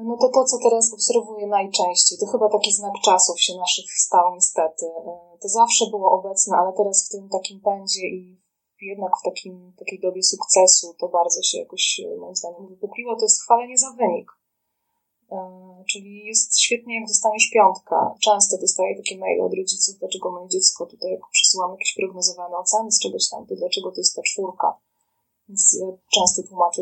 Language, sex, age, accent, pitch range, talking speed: Polish, female, 20-39, native, 185-230 Hz, 175 wpm